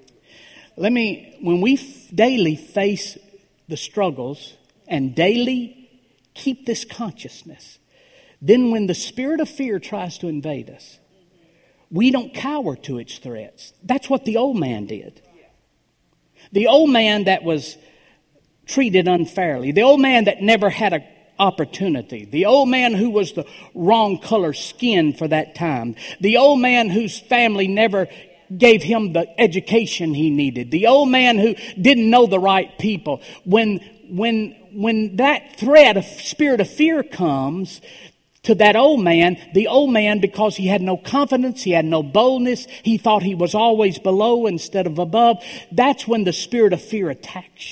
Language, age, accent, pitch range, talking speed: English, 50-69, American, 180-245 Hz, 155 wpm